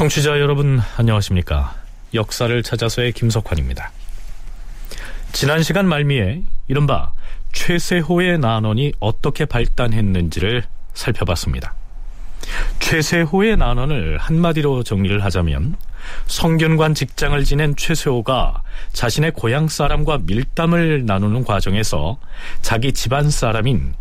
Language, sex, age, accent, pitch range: Korean, male, 40-59, native, 100-155 Hz